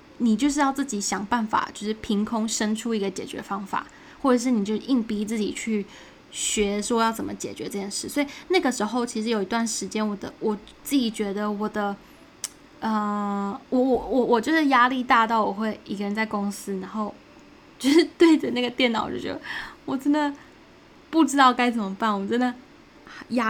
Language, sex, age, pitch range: Chinese, female, 10-29, 210-260 Hz